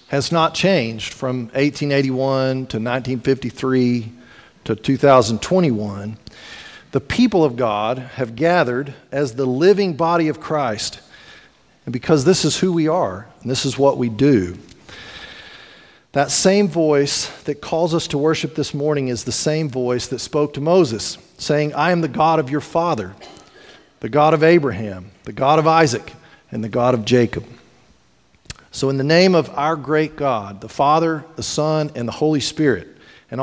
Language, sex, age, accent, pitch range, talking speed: English, male, 40-59, American, 130-170 Hz, 160 wpm